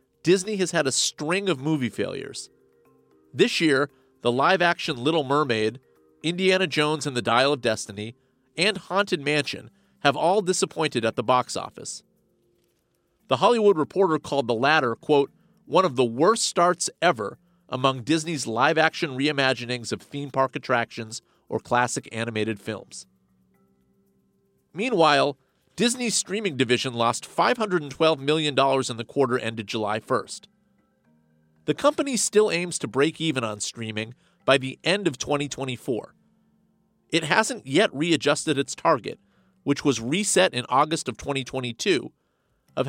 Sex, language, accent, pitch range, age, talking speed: male, English, American, 120-170 Hz, 40-59, 135 wpm